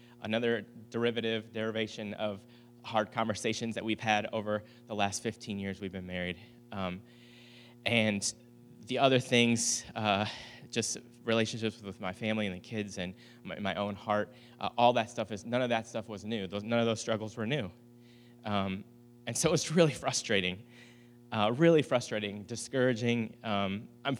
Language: English